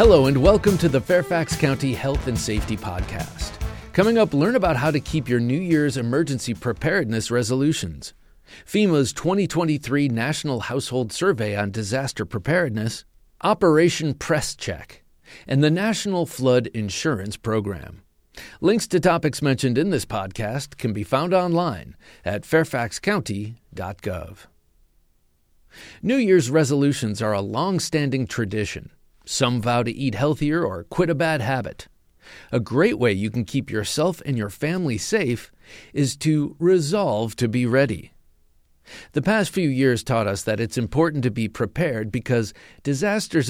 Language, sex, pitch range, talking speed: English, male, 110-160 Hz, 140 wpm